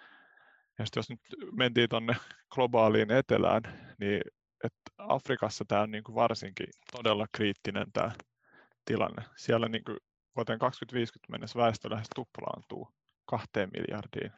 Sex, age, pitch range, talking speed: male, 30-49, 105-120 Hz, 115 wpm